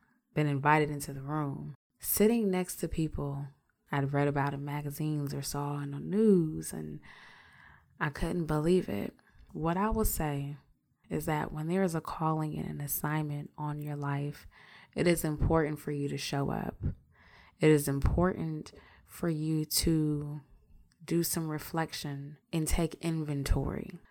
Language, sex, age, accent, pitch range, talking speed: English, female, 20-39, American, 140-165 Hz, 150 wpm